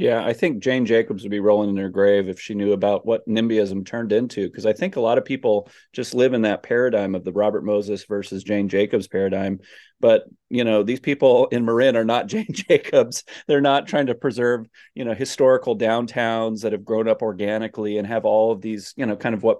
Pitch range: 105-125 Hz